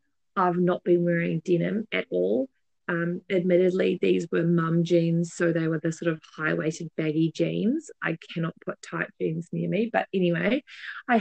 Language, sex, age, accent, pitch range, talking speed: English, female, 30-49, Australian, 185-255 Hz, 175 wpm